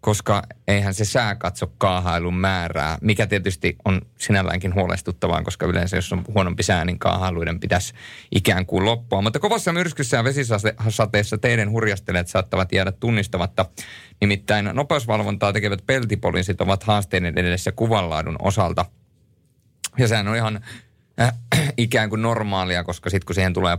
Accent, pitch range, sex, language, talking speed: native, 95-110 Hz, male, Finnish, 140 wpm